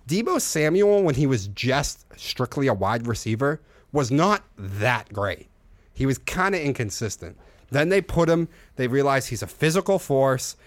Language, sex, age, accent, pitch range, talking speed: English, male, 30-49, American, 105-140 Hz, 165 wpm